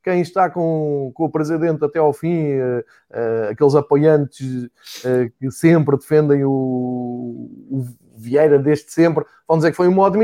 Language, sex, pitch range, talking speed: Portuguese, male, 150-195 Hz, 165 wpm